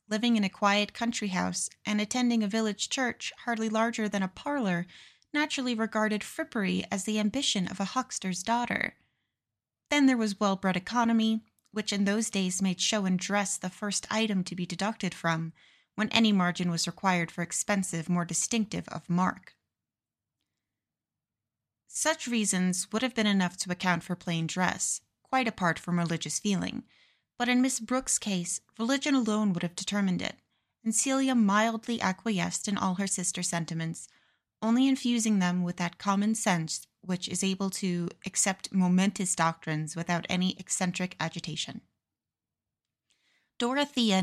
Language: English